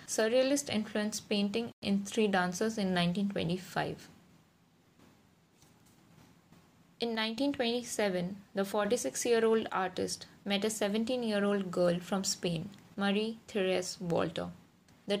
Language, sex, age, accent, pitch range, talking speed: English, female, 20-39, Indian, 190-220 Hz, 90 wpm